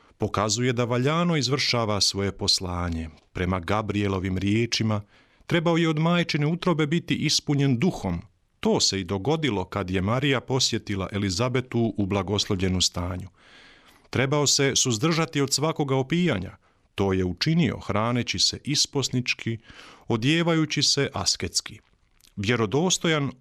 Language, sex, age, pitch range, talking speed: Croatian, male, 40-59, 100-150 Hz, 115 wpm